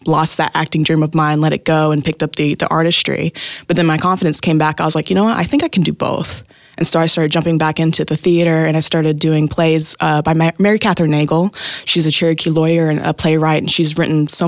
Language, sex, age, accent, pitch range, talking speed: English, female, 20-39, American, 155-170 Hz, 260 wpm